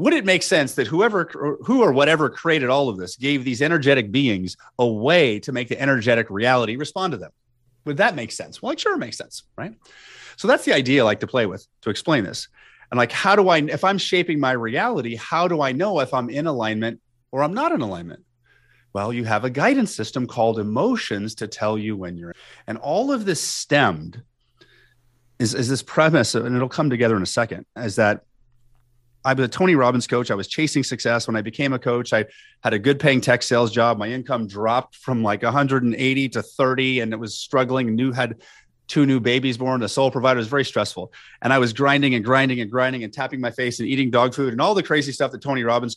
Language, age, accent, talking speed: English, 30-49, American, 230 wpm